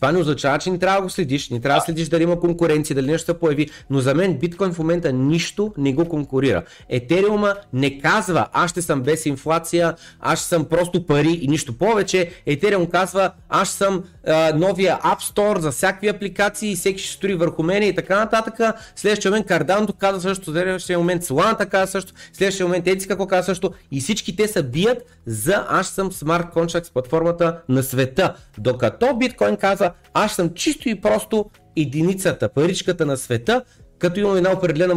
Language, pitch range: Bulgarian, 150-190 Hz